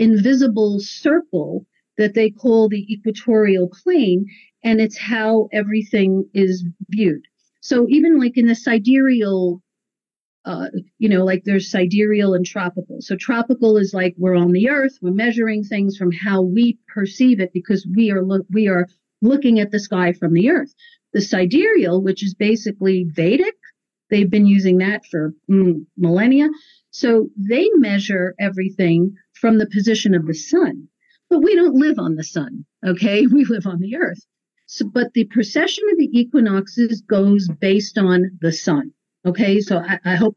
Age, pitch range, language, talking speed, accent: 50-69, 190-235 Hz, English, 165 wpm, American